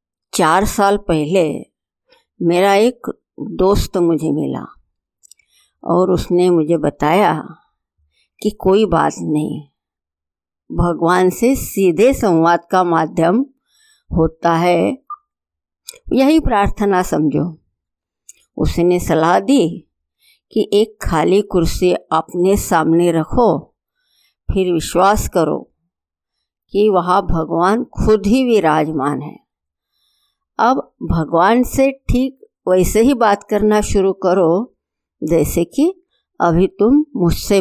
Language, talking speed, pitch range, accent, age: Hindi, 100 wpm, 165-240 Hz, native, 60-79